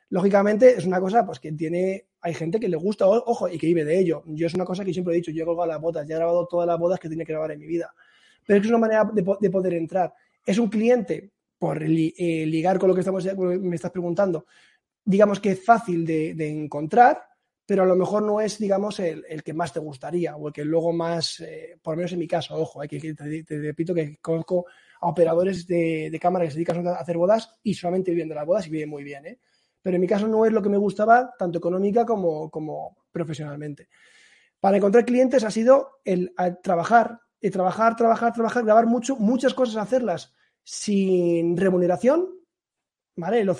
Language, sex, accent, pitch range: Spanish, male, Spanish, 170-225 Hz